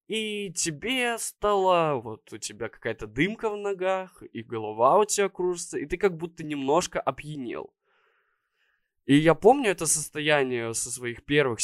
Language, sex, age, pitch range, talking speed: Russian, male, 20-39, 120-160 Hz, 150 wpm